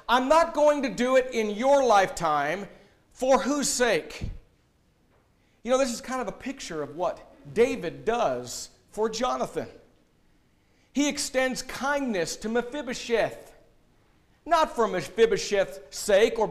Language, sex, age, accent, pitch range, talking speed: English, male, 50-69, American, 165-265 Hz, 130 wpm